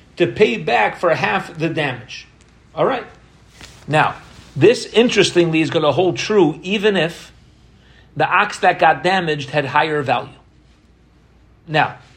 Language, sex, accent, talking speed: English, male, American, 135 wpm